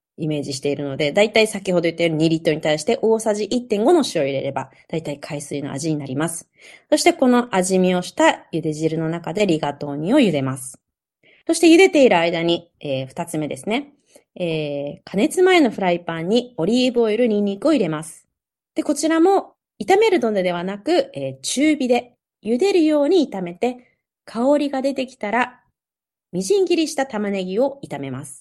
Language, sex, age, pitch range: Japanese, female, 30-49, 170-270 Hz